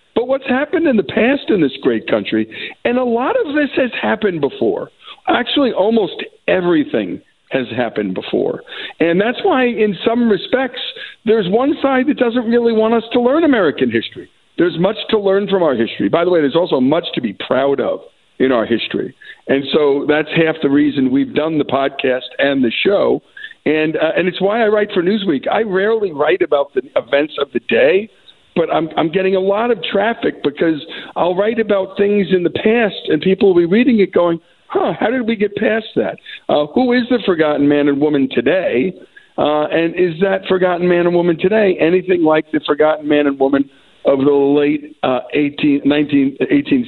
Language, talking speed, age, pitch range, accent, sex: English, 195 wpm, 50-69, 145-240 Hz, American, male